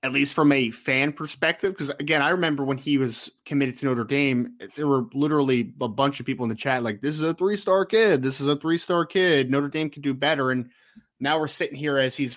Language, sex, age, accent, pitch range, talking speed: English, male, 20-39, American, 125-160 Hz, 250 wpm